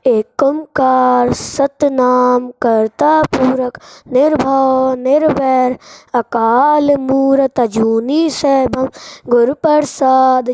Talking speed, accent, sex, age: 75 wpm, Indian, female, 20-39